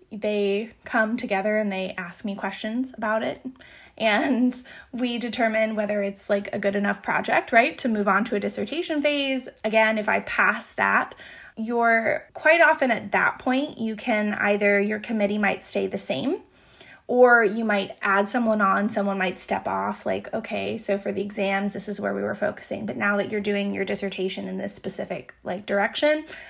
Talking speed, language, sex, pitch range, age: 185 wpm, English, female, 200-240 Hz, 10-29